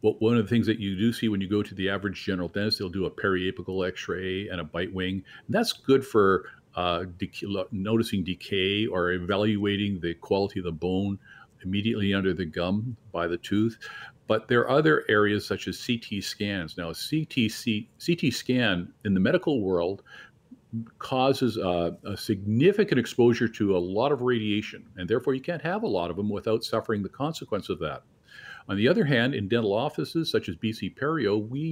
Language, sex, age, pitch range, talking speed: English, male, 50-69, 95-125 Hz, 185 wpm